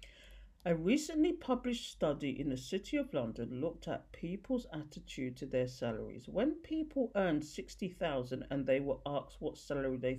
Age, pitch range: 50-69, 135-225 Hz